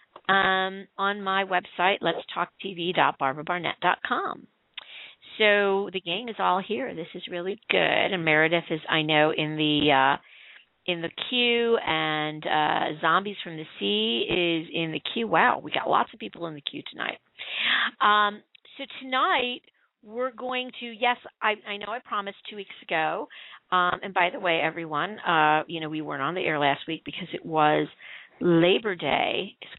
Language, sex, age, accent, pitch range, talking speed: English, female, 40-59, American, 160-200 Hz, 170 wpm